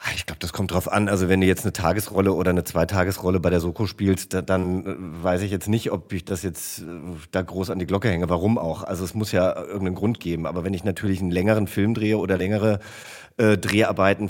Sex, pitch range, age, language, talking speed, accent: male, 95-125 Hz, 40-59, German, 230 wpm, German